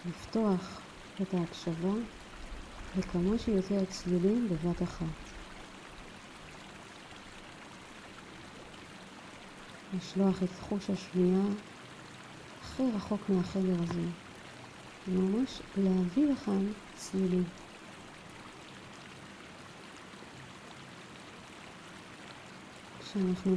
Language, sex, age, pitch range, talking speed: Hebrew, female, 40-59, 180-200 Hz, 55 wpm